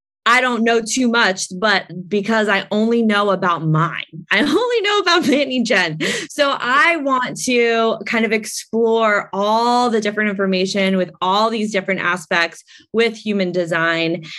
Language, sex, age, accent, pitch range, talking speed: English, female, 20-39, American, 180-220 Hz, 155 wpm